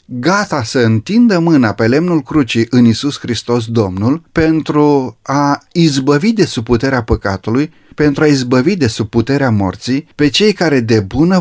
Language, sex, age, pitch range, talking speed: Romanian, male, 30-49, 115-150 Hz, 160 wpm